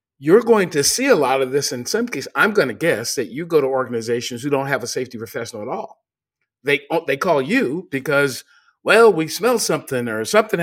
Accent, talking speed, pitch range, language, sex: American, 220 wpm, 130-200 Hz, English, male